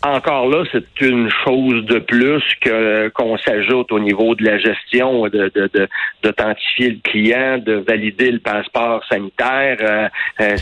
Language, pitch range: French, 115-135 Hz